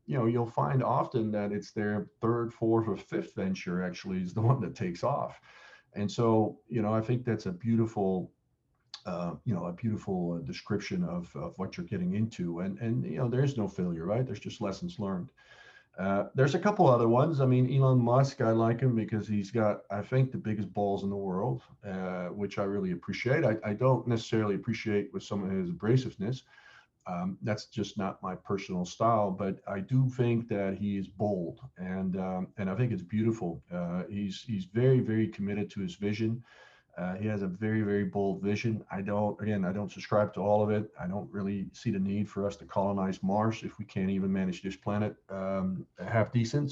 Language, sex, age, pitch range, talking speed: English, male, 50-69, 95-115 Hz, 210 wpm